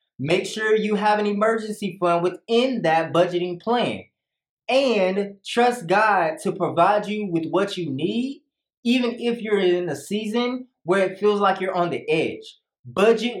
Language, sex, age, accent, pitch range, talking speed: English, male, 20-39, American, 175-230 Hz, 160 wpm